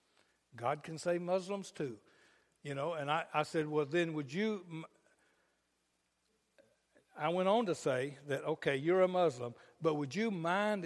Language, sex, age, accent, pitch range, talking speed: English, male, 60-79, American, 130-170 Hz, 160 wpm